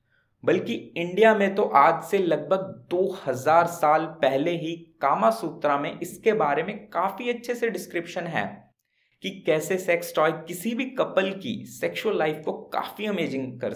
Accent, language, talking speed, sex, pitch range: native, Hindi, 155 wpm, male, 135-195 Hz